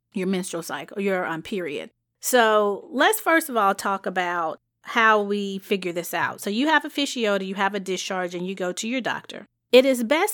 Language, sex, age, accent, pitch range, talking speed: English, female, 30-49, American, 185-245 Hz, 210 wpm